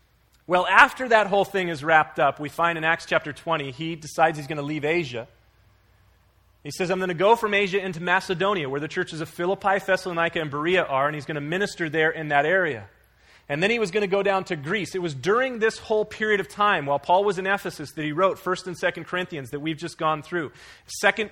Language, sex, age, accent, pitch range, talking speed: English, male, 30-49, American, 155-195 Hz, 240 wpm